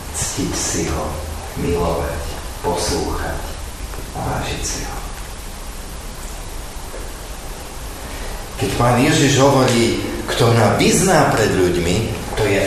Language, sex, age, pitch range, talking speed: Slovak, male, 50-69, 80-120 Hz, 95 wpm